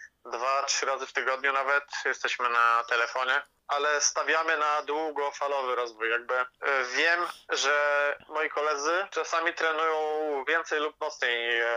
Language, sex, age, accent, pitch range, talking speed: Polish, male, 20-39, native, 125-150 Hz, 120 wpm